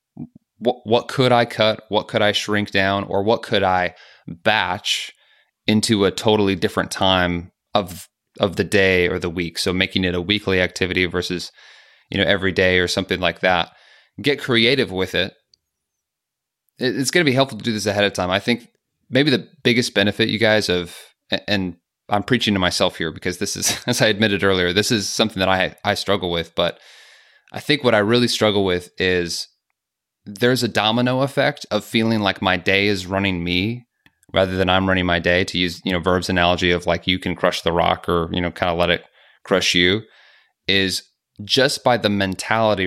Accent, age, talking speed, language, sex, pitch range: American, 20-39, 200 wpm, English, male, 90-110 Hz